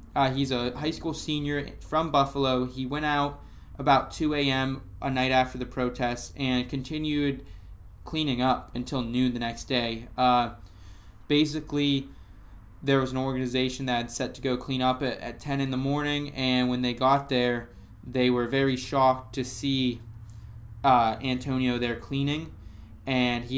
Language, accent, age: English, American, 20-39